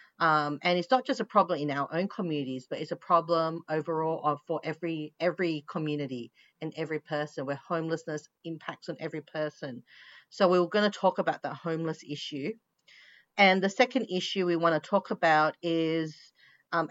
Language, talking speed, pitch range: English, 180 wpm, 155-180 Hz